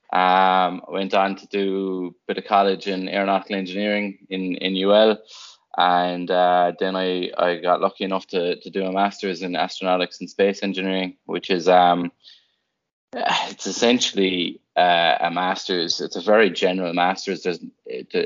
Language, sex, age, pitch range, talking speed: English, male, 20-39, 85-95 Hz, 160 wpm